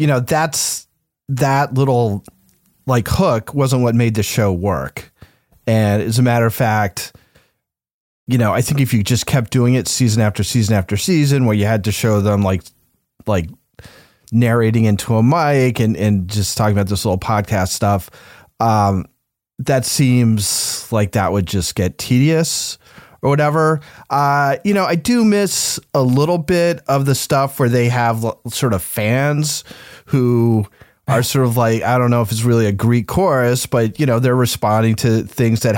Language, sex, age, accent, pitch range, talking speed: English, male, 30-49, American, 110-140 Hz, 180 wpm